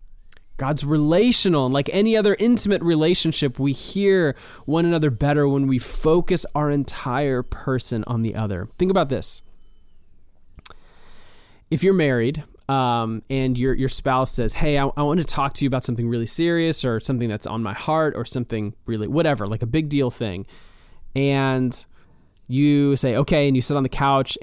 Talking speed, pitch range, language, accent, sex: 175 wpm, 115-150 Hz, English, American, male